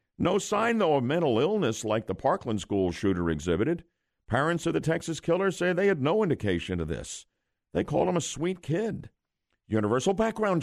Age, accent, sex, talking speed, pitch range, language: 50-69, American, male, 180 wpm, 110-190 Hz, English